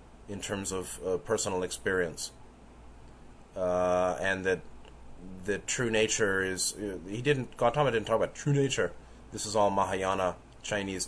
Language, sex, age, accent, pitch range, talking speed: English, male, 30-49, American, 90-105 Hz, 140 wpm